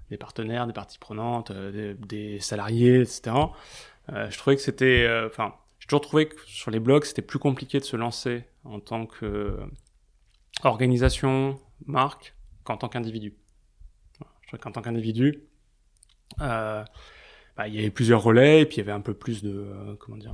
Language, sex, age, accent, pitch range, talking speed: French, male, 20-39, French, 105-135 Hz, 180 wpm